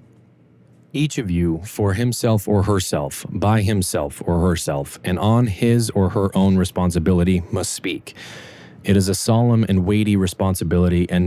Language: English